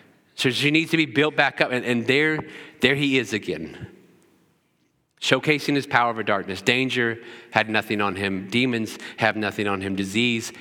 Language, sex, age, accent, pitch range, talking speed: English, male, 40-59, American, 115-165 Hz, 175 wpm